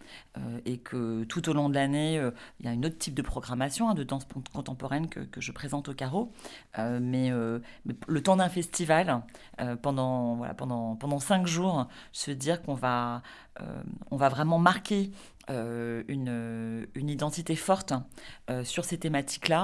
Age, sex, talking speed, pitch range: 40-59, female, 180 wpm, 125-160 Hz